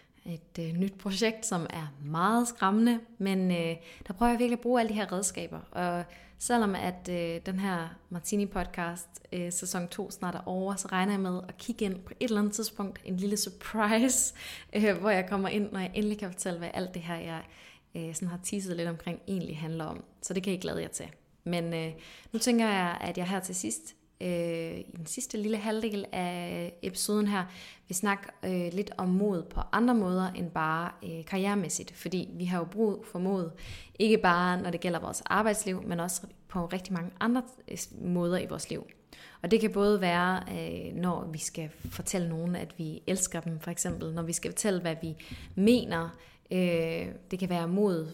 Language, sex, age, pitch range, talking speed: English, female, 20-39, 170-205 Hz, 200 wpm